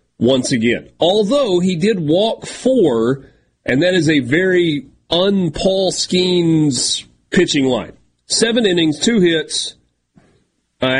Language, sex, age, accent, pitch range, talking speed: English, male, 40-59, American, 125-185 Hz, 115 wpm